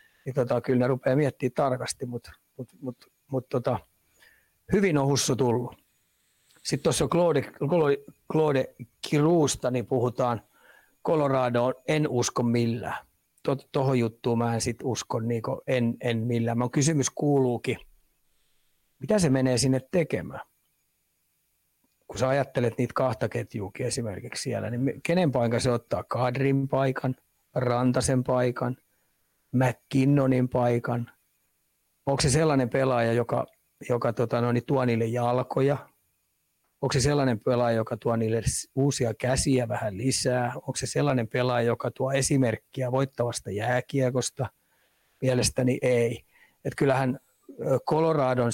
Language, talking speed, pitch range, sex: Finnish, 125 wpm, 120-135 Hz, male